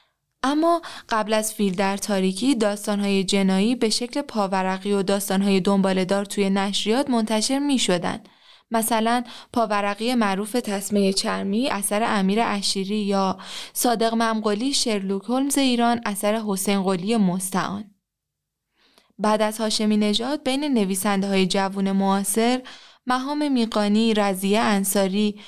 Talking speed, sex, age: 120 wpm, female, 20-39